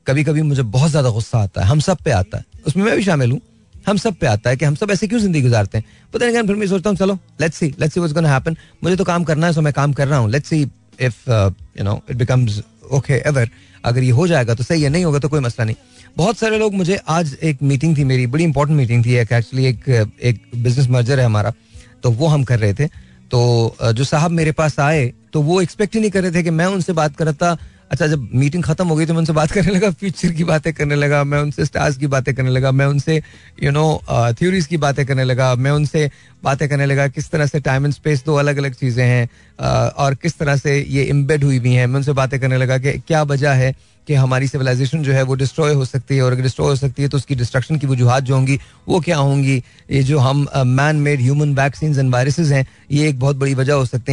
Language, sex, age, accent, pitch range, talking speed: Hindi, male, 30-49, native, 130-155 Hz, 235 wpm